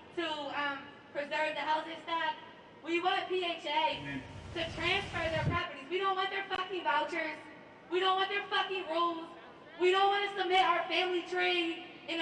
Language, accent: English, American